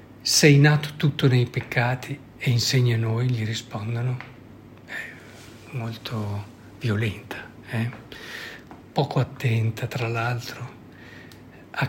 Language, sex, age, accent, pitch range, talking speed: Italian, male, 50-69, native, 120-145 Hz, 95 wpm